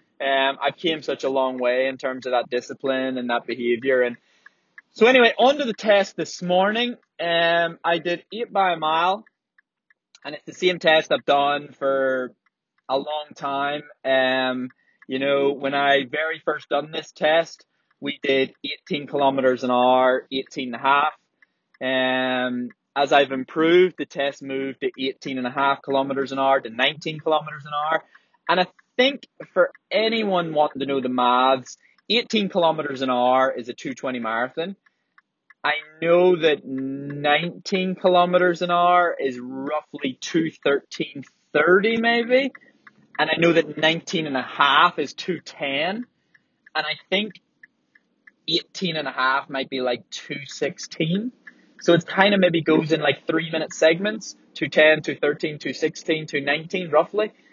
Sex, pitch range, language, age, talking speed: male, 135-175 Hz, English, 20-39, 155 wpm